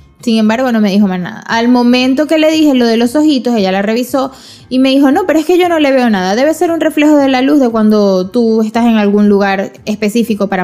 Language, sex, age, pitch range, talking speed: Spanish, female, 20-39, 215-250 Hz, 265 wpm